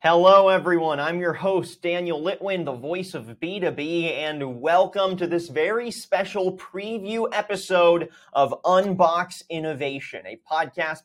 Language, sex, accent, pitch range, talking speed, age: English, male, American, 150-190 Hz, 130 wpm, 30-49